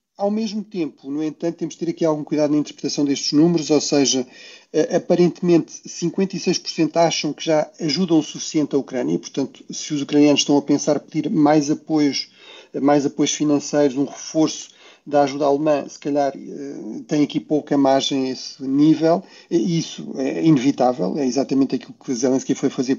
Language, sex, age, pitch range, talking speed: Portuguese, male, 40-59, 145-165 Hz, 175 wpm